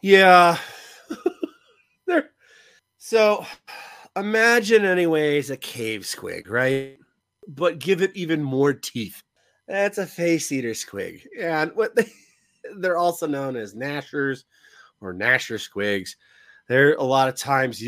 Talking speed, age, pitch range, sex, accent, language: 120 wpm, 30-49, 130-185 Hz, male, American, English